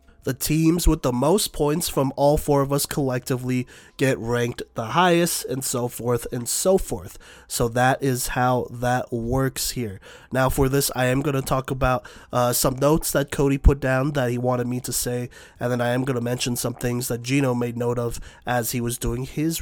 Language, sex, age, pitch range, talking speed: English, male, 20-39, 120-140 Hz, 215 wpm